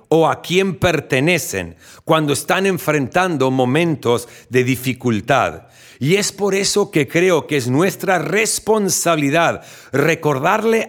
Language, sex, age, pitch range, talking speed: Spanish, male, 50-69, 130-195 Hz, 115 wpm